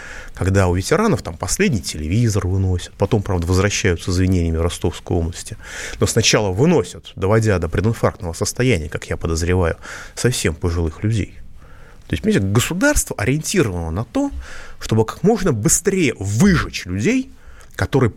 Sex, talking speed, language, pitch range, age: male, 135 wpm, Russian, 90-125 Hz, 30-49